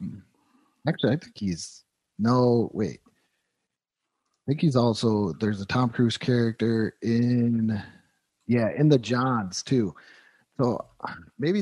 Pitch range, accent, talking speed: 105-130 Hz, American, 120 wpm